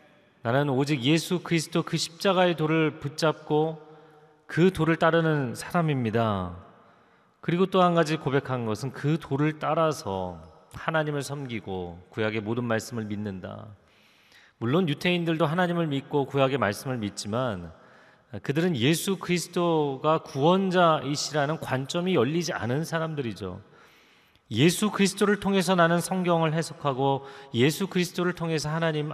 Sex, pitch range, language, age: male, 115-160 Hz, Korean, 30-49